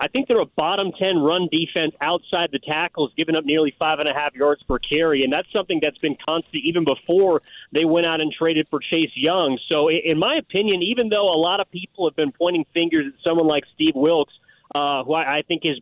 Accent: American